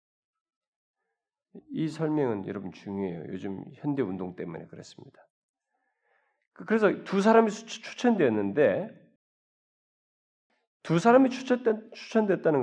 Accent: native